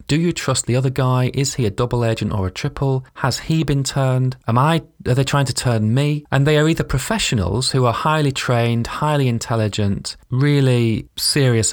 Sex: male